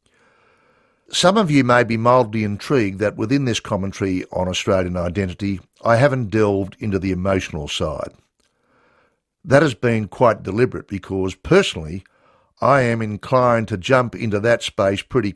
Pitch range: 95-120 Hz